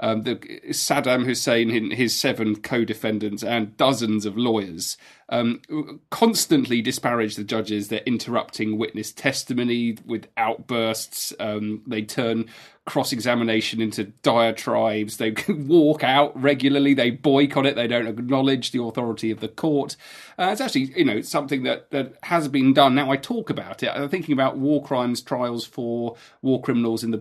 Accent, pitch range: British, 115-155 Hz